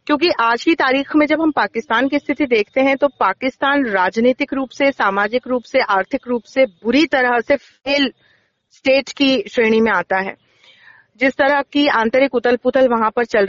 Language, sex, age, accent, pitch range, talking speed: Hindi, female, 40-59, native, 230-285 Hz, 185 wpm